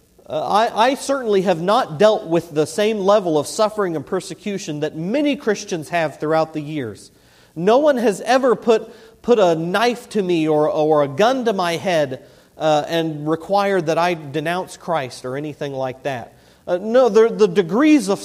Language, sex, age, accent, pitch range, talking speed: English, male, 40-59, American, 145-215 Hz, 180 wpm